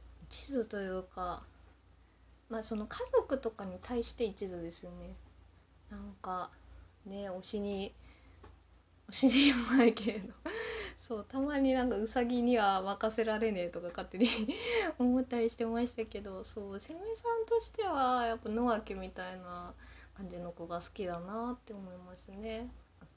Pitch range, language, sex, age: 170-235 Hz, Japanese, female, 20-39